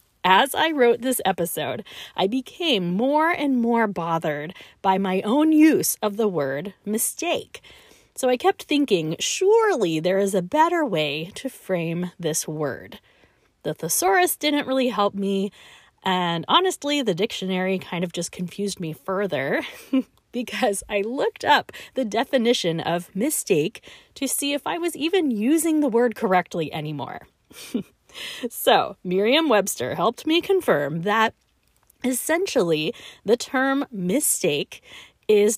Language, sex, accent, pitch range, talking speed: English, female, American, 180-285 Hz, 135 wpm